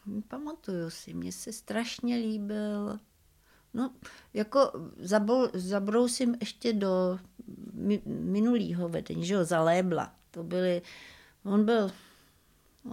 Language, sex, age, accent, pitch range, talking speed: Czech, female, 60-79, native, 165-205 Hz, 95 wpm